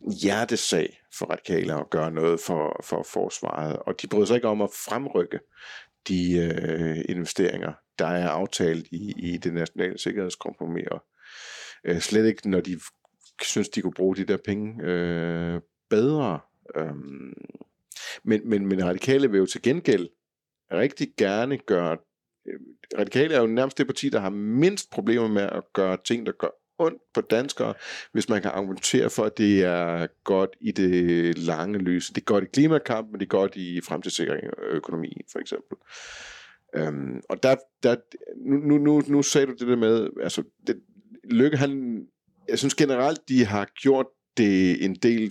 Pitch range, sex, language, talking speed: 90-125 Hz, male, Danish, 165 wpm